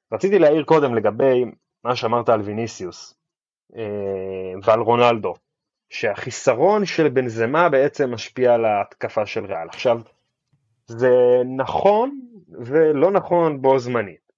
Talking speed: 110 wpm